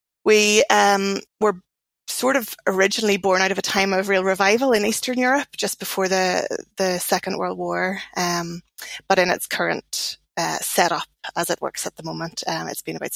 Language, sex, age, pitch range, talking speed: English, female, 20-39, 175-200 Hz, 185 wpm